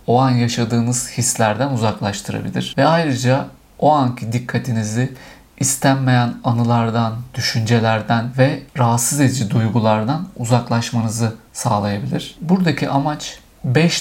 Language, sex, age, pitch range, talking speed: Turkish, male, 50-69, 120-140 Hz, 95 wpm